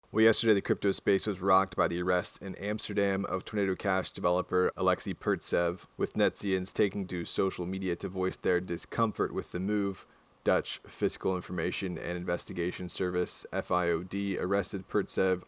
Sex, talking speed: male, 155 wpm